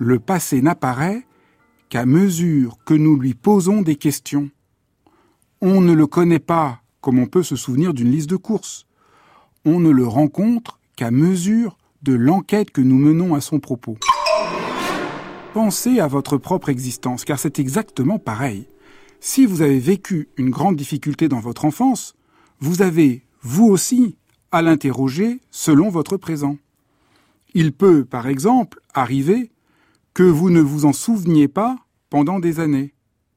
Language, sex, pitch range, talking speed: French, male, 135-190 Hz, 145 wpm